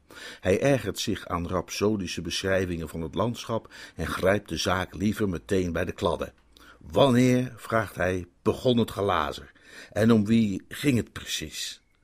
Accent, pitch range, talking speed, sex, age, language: Dutch, 85-120 Hz, 150 wpm, male, 50-69, Dutch